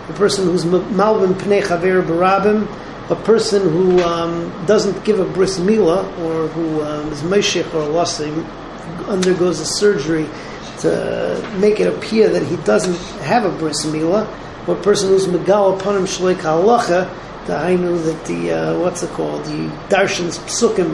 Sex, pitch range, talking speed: male, 170-200 Hz, 150 wpm